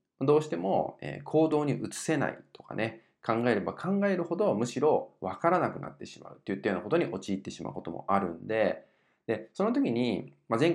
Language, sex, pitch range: Japanese, male, 100-160 Hz